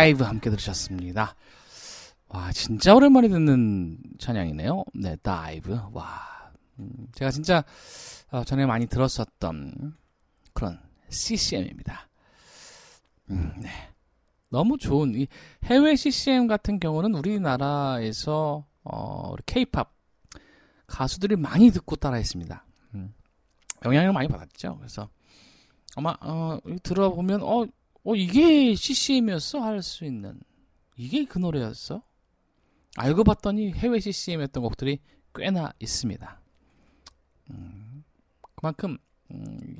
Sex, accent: male, native